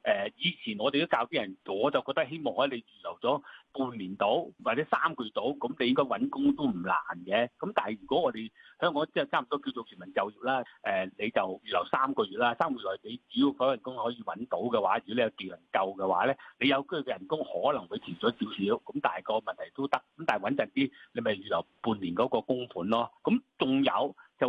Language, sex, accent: Chinese, male, native